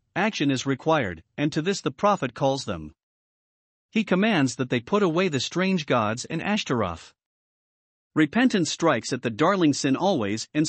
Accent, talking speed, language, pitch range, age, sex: American, 165 wpm, English, 125-175 Hz, 50-69, male